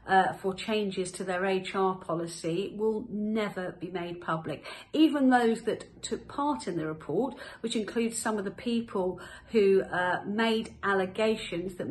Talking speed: 155 wpm